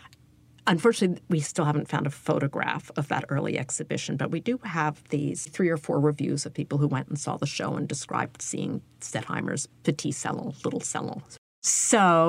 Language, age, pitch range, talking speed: English, 50-69, 150-180 Hz, 180 wpm